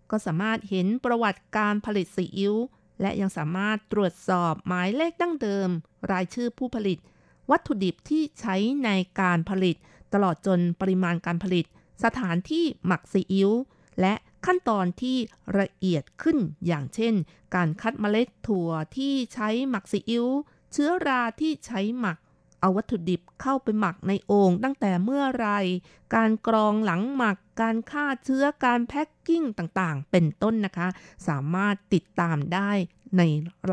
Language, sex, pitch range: Thai, female, 180-230 Hz